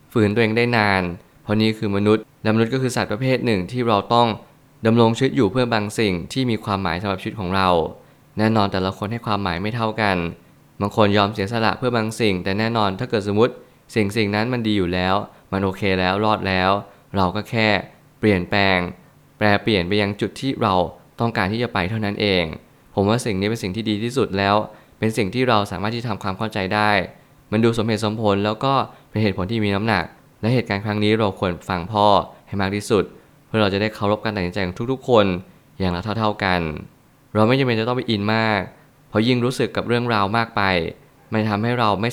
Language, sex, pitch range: Thai, male, 100-115 Hz